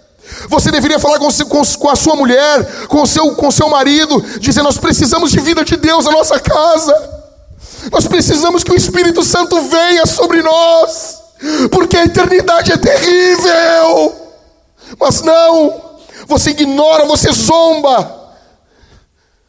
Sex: male